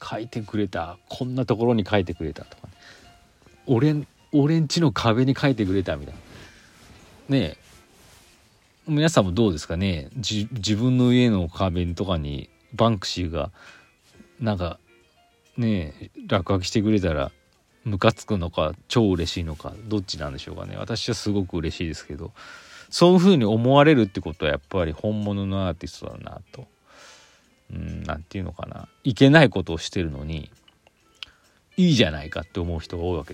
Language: Japanese